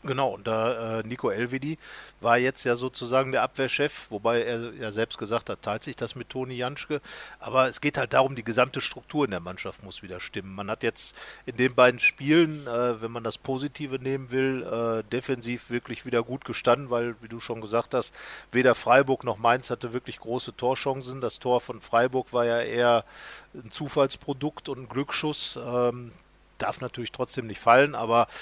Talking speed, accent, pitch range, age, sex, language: 190 wpm, German, 115-135 Hz, 40-59, male, German